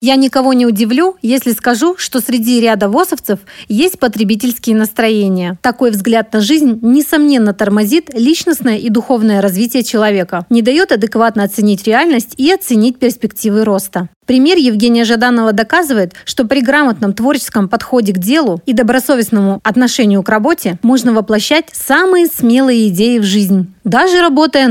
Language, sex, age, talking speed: Russian, female, 30-49, 140 wpm